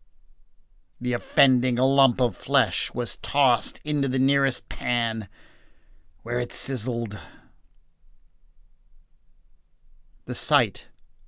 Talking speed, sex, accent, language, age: 85 wpm, male, American, English, 50-69